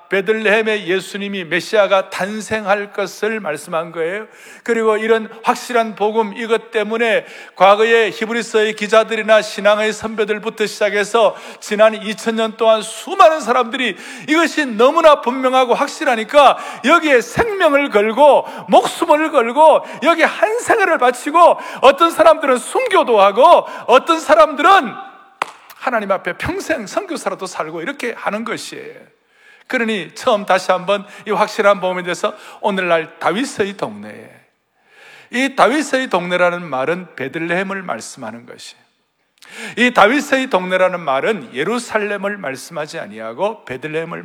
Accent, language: native, Korean